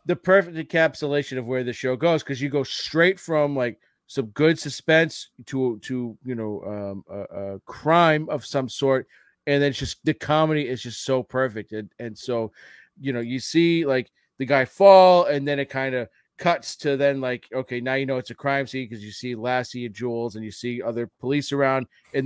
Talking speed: 210 wpm